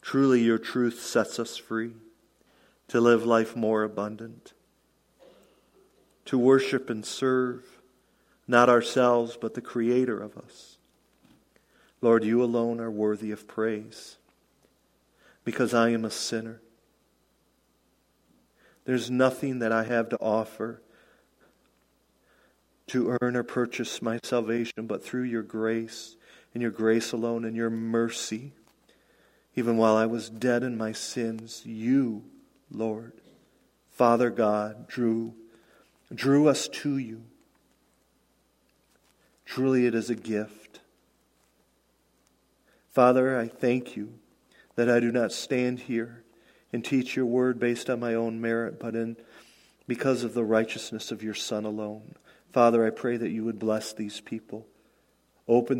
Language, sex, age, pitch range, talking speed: English, male, 40-59, 110-120 Hz, 130 wpm